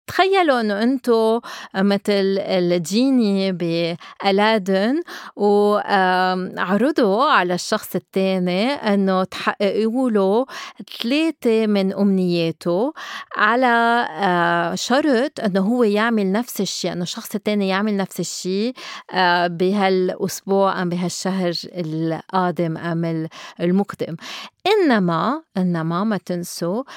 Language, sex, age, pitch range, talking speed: Arabic, female, 30-49, 185-225 Hz, 85 wpm